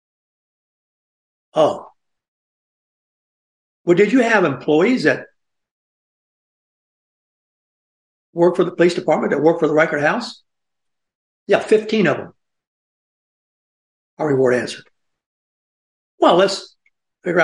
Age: 60-79